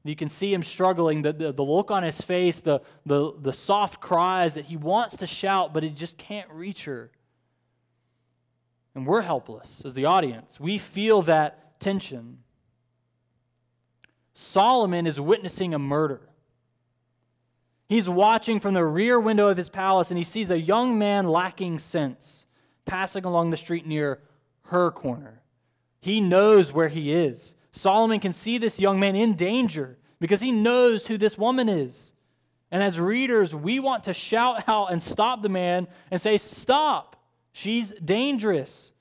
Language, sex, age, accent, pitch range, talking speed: English, male, 20-39, American, 140-200 Hz, 160 wpm